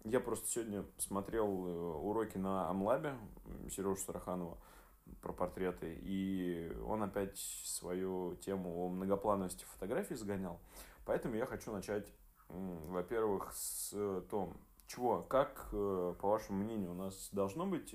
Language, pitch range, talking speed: Russian, 90-105 Hz, 120 wpm